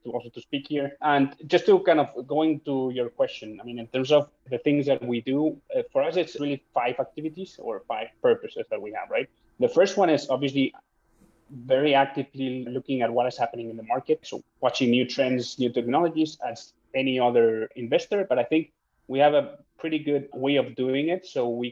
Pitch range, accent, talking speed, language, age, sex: 120-145 Hz, Spanish, 210 wpm, English, 20-39, male